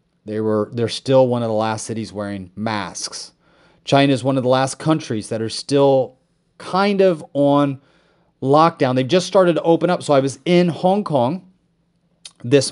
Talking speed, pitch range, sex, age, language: 180 wpm, 125-170 Hz, male, 30-49, English